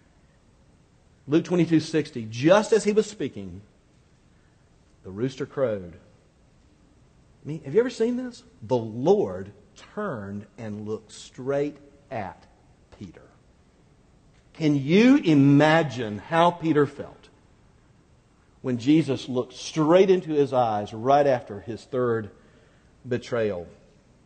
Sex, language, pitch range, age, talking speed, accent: male, English, 130-185 Hz, 50-69, 115 wpm, American